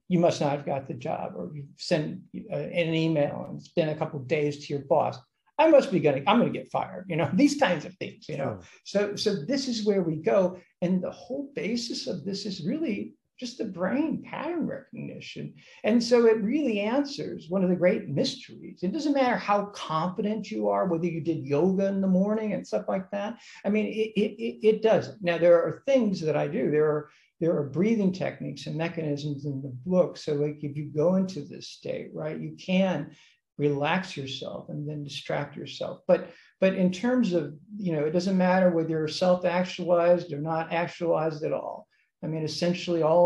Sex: male